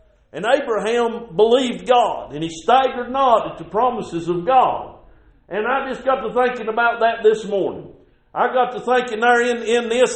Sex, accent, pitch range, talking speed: male, American, 230-285 Hz, 185 wpm